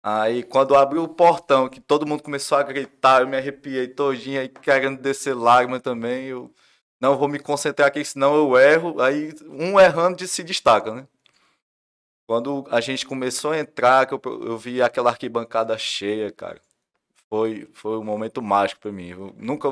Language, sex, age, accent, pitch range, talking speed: Portuguese, male, 20-39, Brazilian, 110-140 Hz, 180 wpm